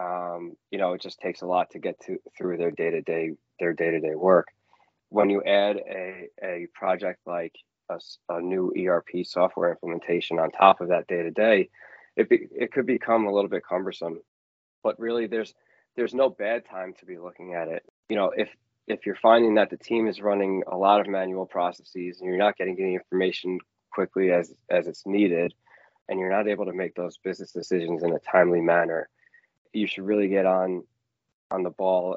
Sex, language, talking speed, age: male, English, 205 wpm, 20-39